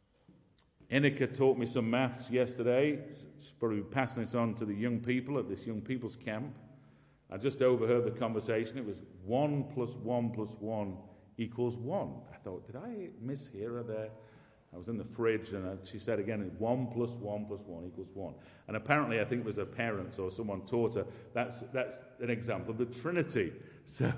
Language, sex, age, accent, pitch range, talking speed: English, male, 50-69, British, 115-155 Hz, 195 wpm